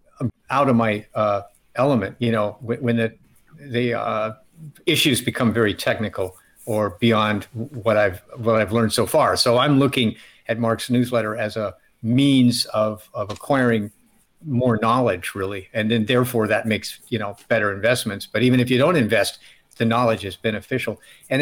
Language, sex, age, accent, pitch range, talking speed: English, male, 50-69, American, 110-125 Hz, 170 wpm